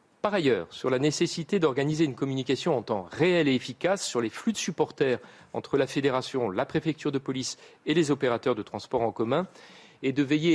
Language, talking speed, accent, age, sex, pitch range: French, 200 wpm, French, 40-59, male, 135-185 Hz